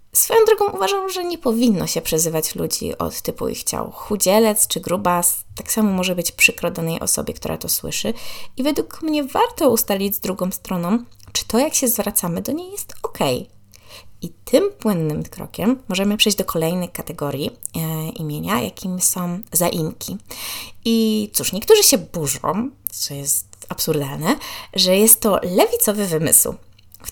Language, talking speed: Polish, 155 wpm